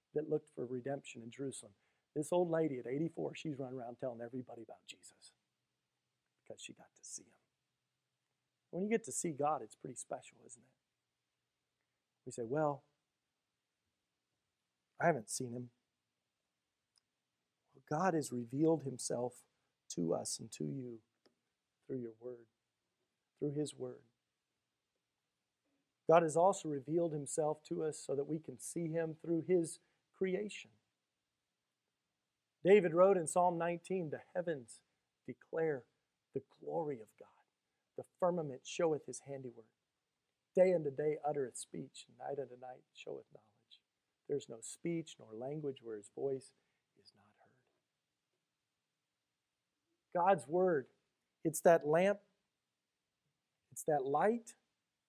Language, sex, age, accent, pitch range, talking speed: English, male, 40-59, American, 120-170 Hz, 130 wpm